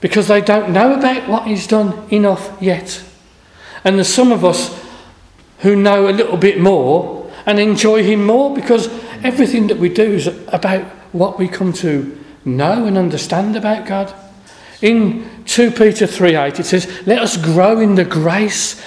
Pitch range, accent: 175-215 Hz, British